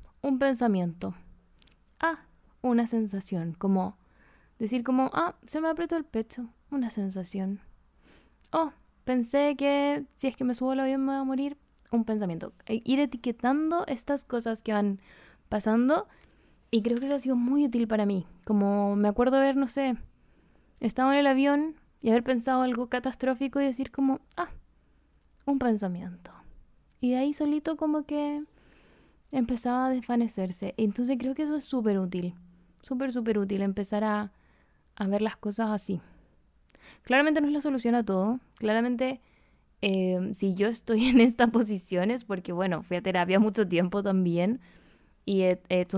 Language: Spanish